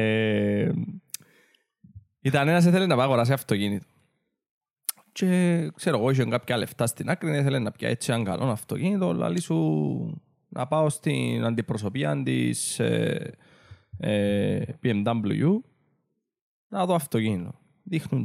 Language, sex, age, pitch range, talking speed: Greek, male, 20-39, 110-160 Hz, 120 wpm